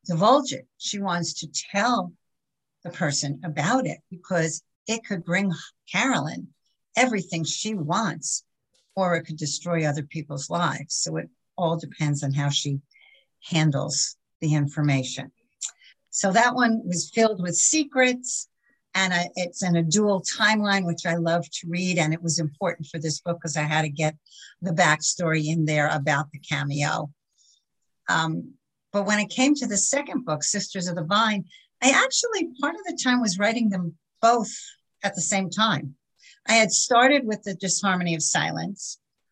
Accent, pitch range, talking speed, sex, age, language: American, 160-220 Hz, 160 wpm, female, 60-79, English